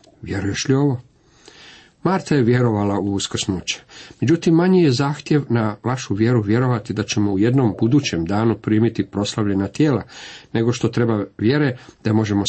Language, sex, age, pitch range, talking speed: Croatian, male, 50-69, 105-135 Hz, 150 wpm